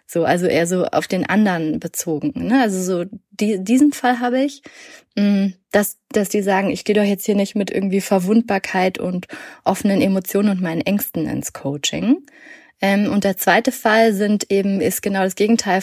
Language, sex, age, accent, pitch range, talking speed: German, female, 20-39, German, 190-225 Hz, 180 wpm